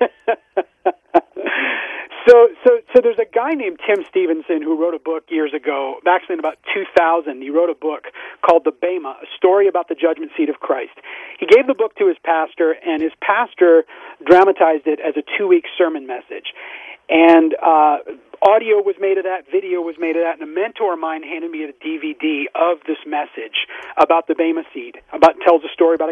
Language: English